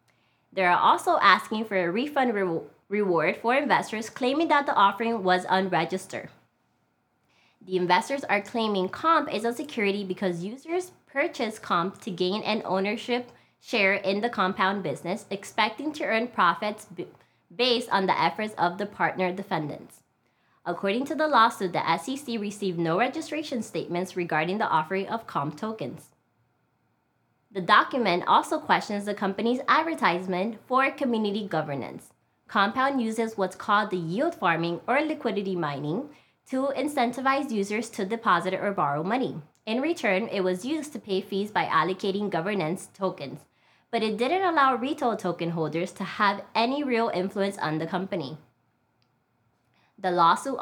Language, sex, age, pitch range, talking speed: English, female, 20-39, 180-240 Hz, 145 wpm